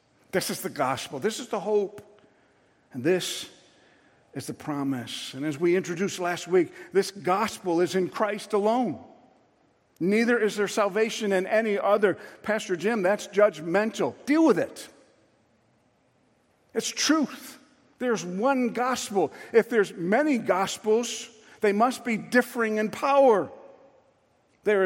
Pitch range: 175-230 Hz